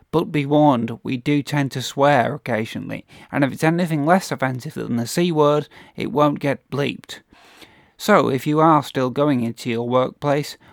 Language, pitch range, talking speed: English, 135-155 Hz, 180 wpm